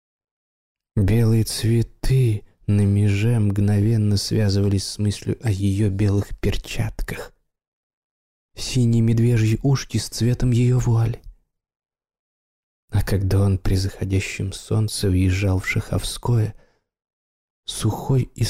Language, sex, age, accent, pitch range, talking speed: Russian, male, 20-39, native, 100-120 Hz, 95 wpm